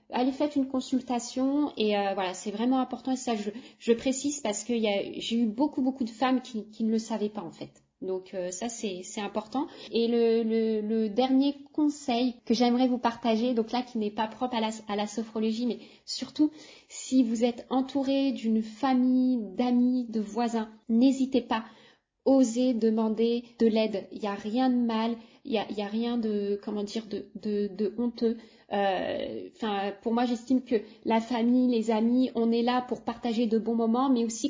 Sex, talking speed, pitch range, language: female, 200 wpm, 220-260 Hz, French